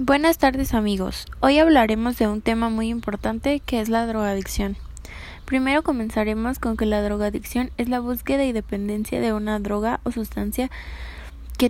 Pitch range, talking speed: 195-240 Hz, 160 wpm